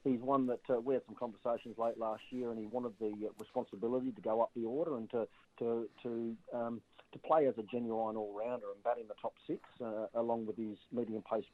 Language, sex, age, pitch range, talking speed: English, male, 40-59, 105-115 Hz, 225 wpm